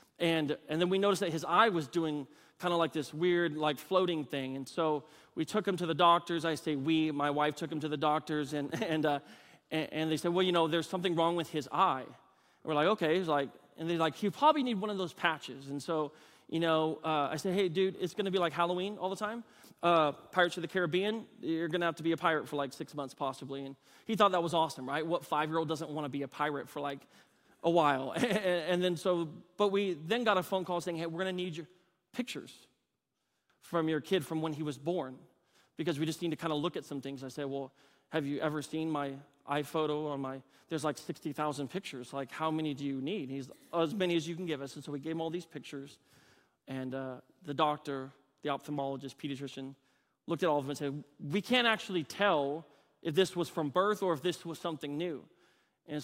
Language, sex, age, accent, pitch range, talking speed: English, male, 30-49, American, 145-175 Hz, 245 wpm